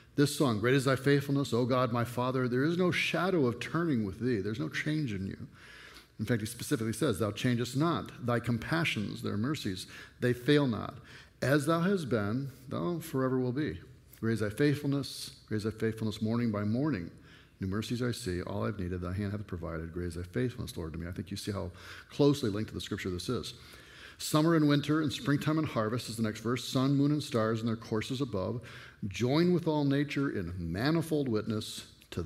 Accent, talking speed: American, 210 wpm